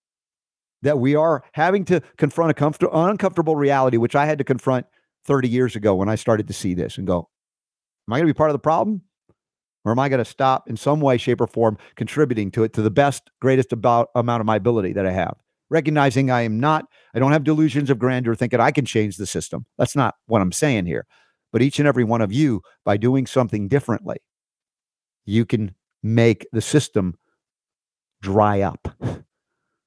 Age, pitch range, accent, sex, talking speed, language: 50-69, 110-140 Hz, American, male, 205 wpm, English